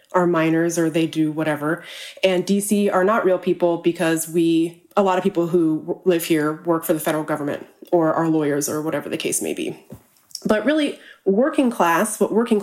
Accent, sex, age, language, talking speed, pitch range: American, female, 20-39, English, 195 wpm, 160-190 Hz